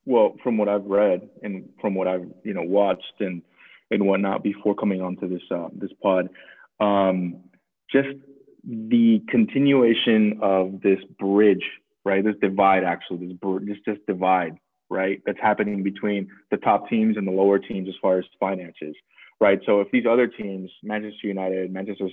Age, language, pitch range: 20-39, English, 95-105 Hz